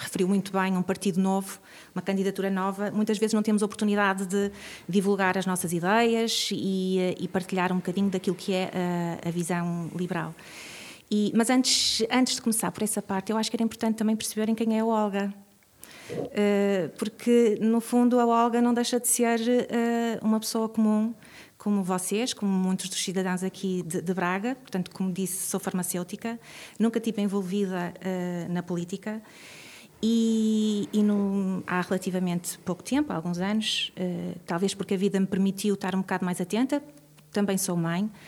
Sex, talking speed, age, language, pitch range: female, 170 wpm, 30-49, Portuguese, 180-215 Hz